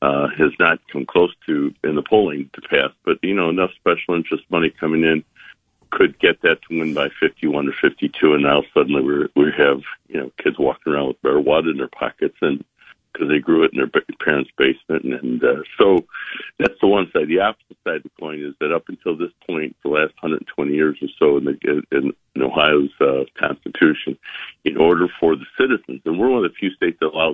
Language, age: English, 60-79